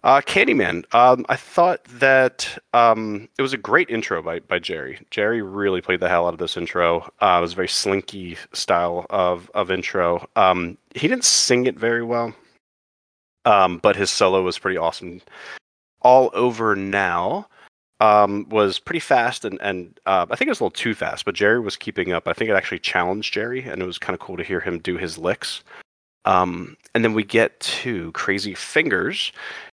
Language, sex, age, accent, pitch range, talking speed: English, male, 30-49, American, 85-115 Hz, 200 wpm